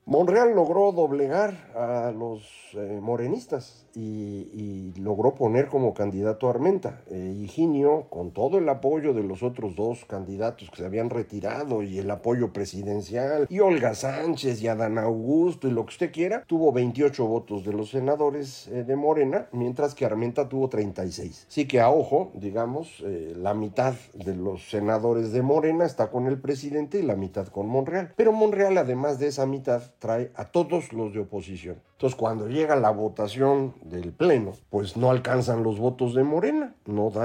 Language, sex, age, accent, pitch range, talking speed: Spanish, male, 50-69, Mexican, 105-145 Hz, 175 wpm